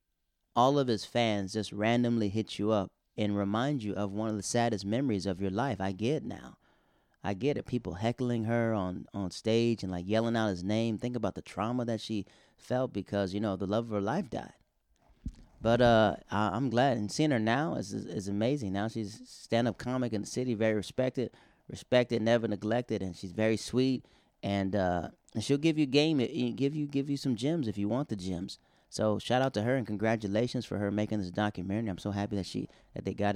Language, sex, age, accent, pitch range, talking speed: English, male, 30-49, American, 100-115 Hz, 225 wpm